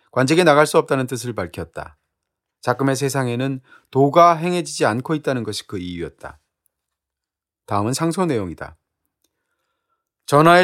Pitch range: 110-155 Hz